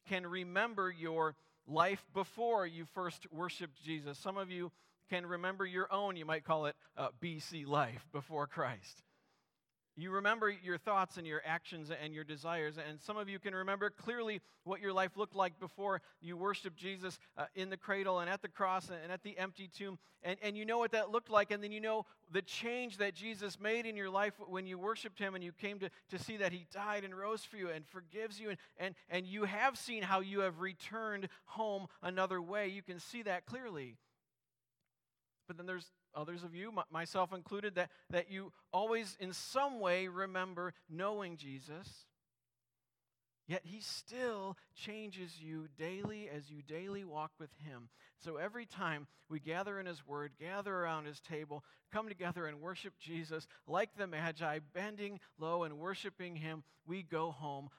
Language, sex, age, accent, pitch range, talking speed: English, male, 40-59, American, 160-200 Hz, 190 wpm